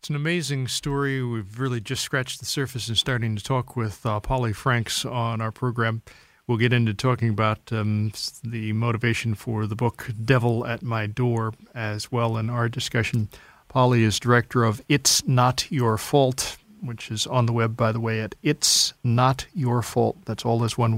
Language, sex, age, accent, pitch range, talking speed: English, male, 40-59, American, 110-125 Hz, 190 wpm